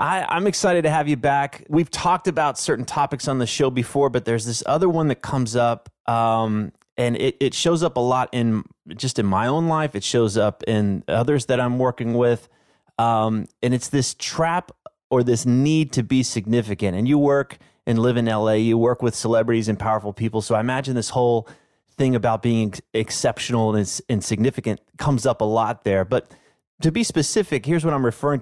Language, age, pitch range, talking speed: English, 30-49, 115-140 Hz, 200 wpm